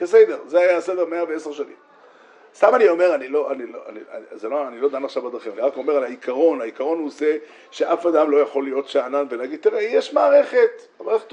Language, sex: Hebrew, male